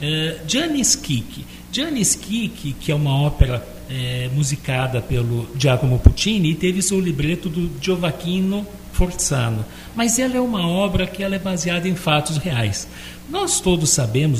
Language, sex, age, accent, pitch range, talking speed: Portuguese, male, 60-79, Brazilian, 135-200 Hz, 140 wpm